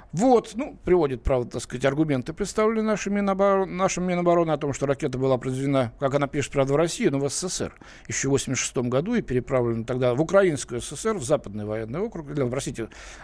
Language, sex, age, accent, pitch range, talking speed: Russian, male, 60-79, native, 135-185 Hz, 190 wpm